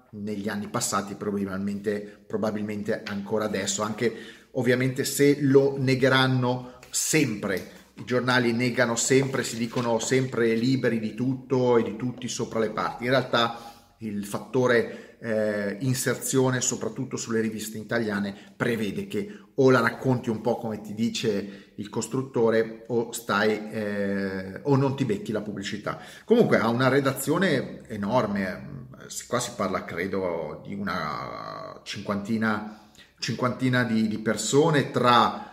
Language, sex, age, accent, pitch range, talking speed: Italian, male, 30-49, native, 105-130 Hz, 130 wpm